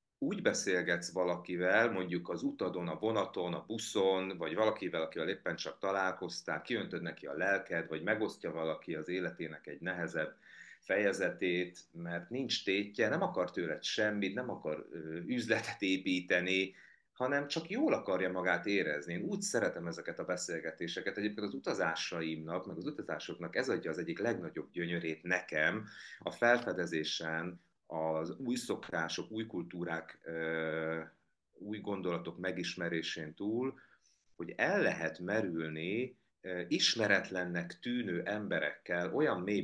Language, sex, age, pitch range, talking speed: Hungarian, male, 30-49, 85-110 Hz, 130 wpm